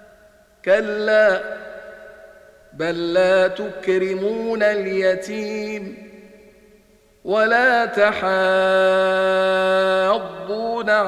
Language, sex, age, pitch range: Arabic, male, 50-69, 195-215 Hz